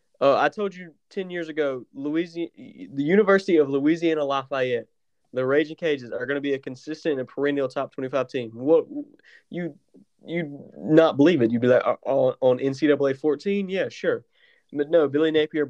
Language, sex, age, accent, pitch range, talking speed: English, male, 20-39, American, 125-160 Hz, 175 wpm